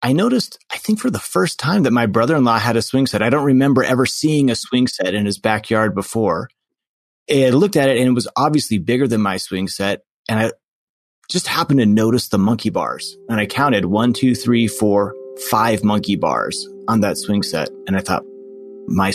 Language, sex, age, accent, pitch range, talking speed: English, male, 30-49, American, 105-140 Hz, 210 wpm